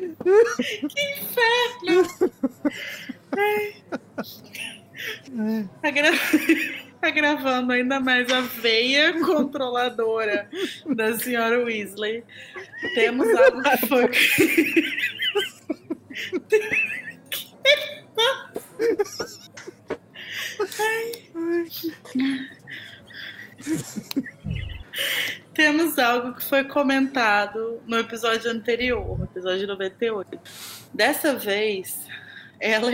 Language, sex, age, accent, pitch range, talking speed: Portuguese, female, 20-39, Brazilian, 200-275 Hz, 55 wpm